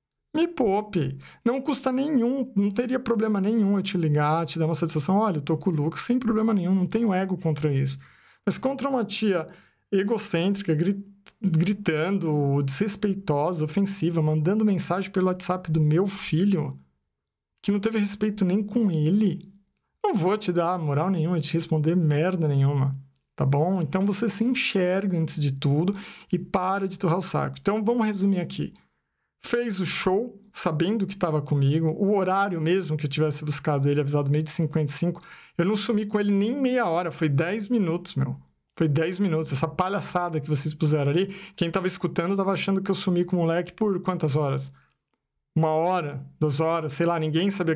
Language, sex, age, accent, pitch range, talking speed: Portuguese, male, 50-69, Brazilian, 160-205 Hz, 180 wpm